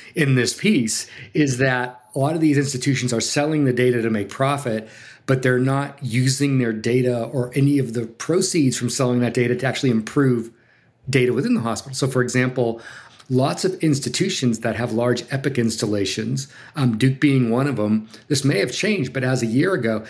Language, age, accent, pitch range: English, 40-59, American, 120-145 Hz